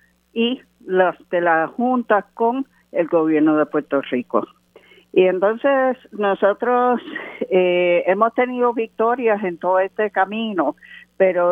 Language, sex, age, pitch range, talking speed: Spanish, female, 50-69, 170-215 Hz, 120 wpm